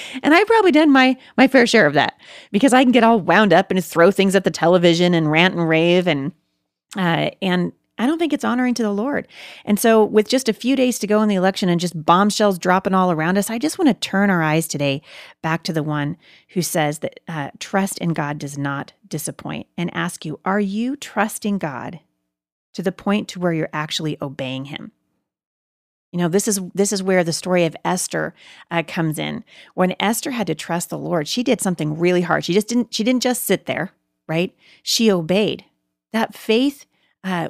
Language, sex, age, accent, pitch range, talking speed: English, female, 30-49, American, 160-210 Hz, 215 wpm